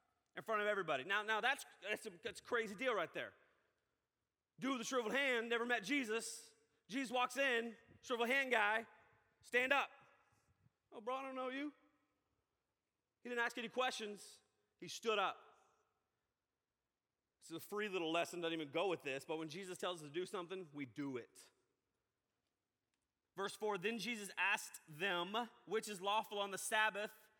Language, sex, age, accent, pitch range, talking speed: English, male, 30-49, American, 170-250 Hz, 170 wpm